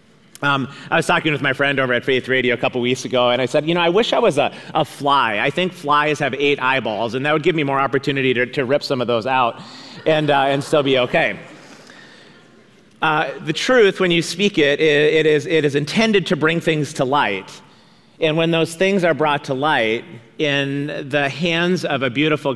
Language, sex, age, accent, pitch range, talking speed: English, male, 40-59, American, 130-155 Hz, 225 wpm